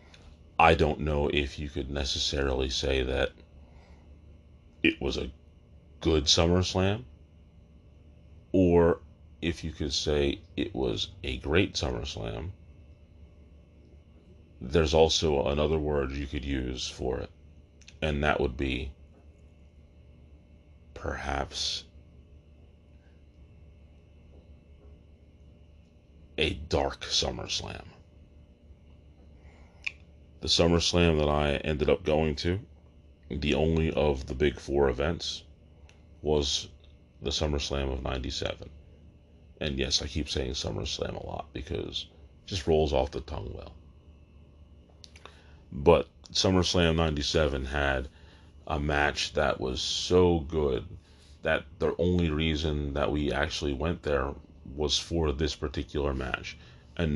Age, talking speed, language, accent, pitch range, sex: 40-59, 105 wpm, English, American, 75-80 Hz, male